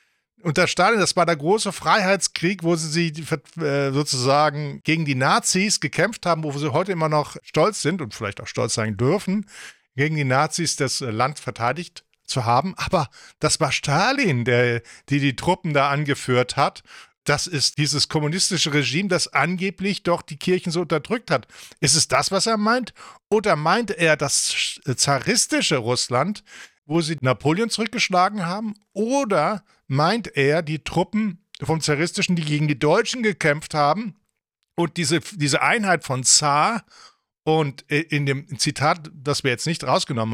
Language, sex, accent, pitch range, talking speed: English, male, German, 145-185 Hz, 160 wpm